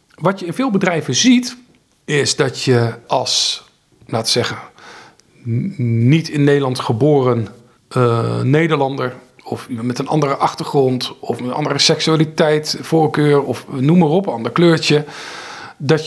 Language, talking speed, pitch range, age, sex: Dutch, 140 wpm, 120-170 Hz, 50-69, male